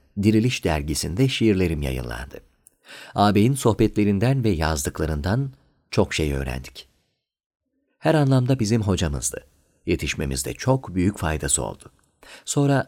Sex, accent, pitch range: male, native, 85-120 Hz